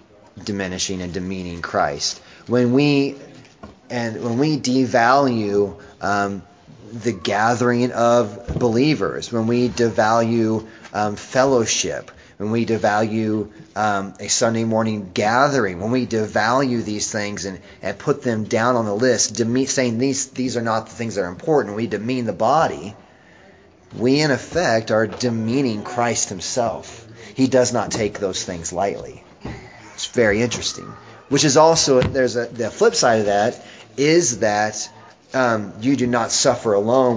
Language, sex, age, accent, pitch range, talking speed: English, male, 30-49, American, 105-125 Hz, 145 wpm